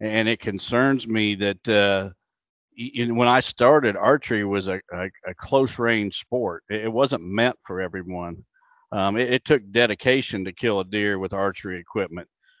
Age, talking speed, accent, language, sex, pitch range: 50-69, 155 wpm, American, English, male, 100-120 Hz